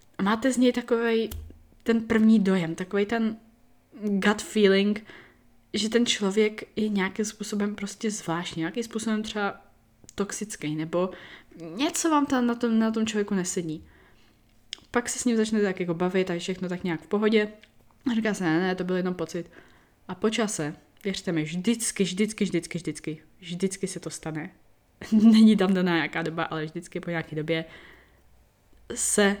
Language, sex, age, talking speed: Czech, female, 20-39, 165 wpm